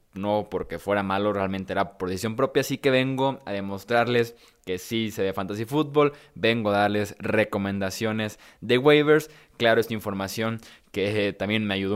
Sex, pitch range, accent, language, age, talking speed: male, 105-120 Hz, Mexican, Spanish, 20-39, 165 wpm